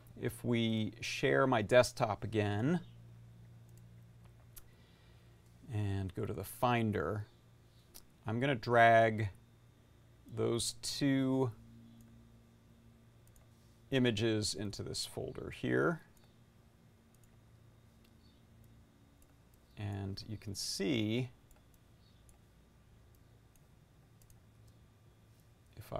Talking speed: 60 wpm